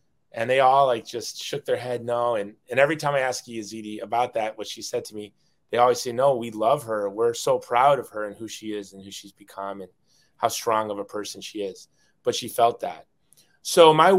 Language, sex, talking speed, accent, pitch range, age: English, male, 240 wpm, American, 105-125 Hz, 30-49